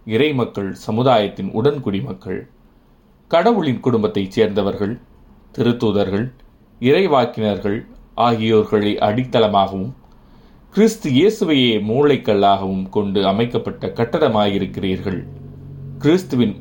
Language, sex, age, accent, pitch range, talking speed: Tamil, male, 30-49, native, 100-120 Hz, 70 wpm